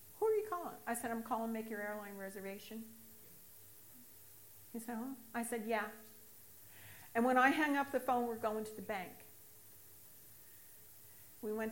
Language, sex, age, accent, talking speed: English, female, 50-69, American, 155 wpm